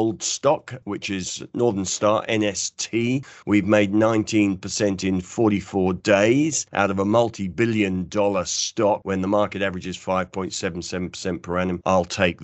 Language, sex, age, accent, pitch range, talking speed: English, male, 50-69, British, 90-105 Hz, 135 wpm